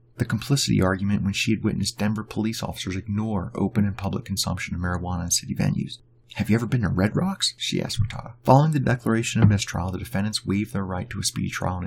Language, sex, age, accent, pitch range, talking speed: English, male, 30-49, American, 100-120 Hz, 225 wpm